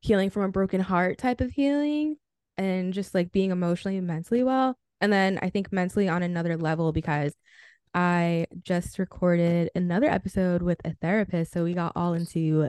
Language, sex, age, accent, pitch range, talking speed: English, female, 10-29, American, 175-225 Hz, 180 wpm